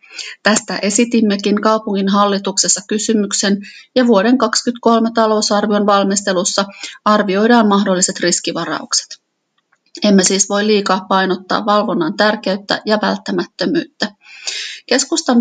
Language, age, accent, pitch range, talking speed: Finnish, 30-49, native, 195-235 Hz, 90 wpm